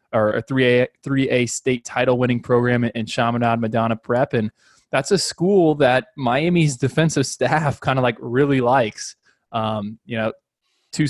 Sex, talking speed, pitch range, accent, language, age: male, 155 wpm, 115-130 Hz, American, English, 20-39